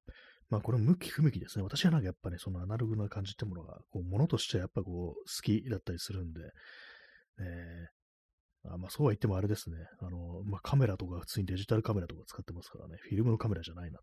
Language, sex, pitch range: Japanese, male, 90-115 Hz